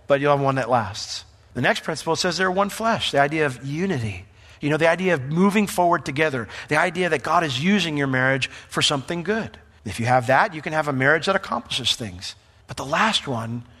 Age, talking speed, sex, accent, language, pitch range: 40-59, 225 wpm, male, American, English, 115-170 Hz